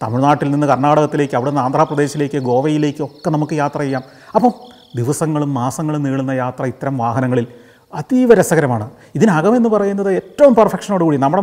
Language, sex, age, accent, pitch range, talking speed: Malayalam, male, 30-49, native, 130-175 Hz, 120 wpm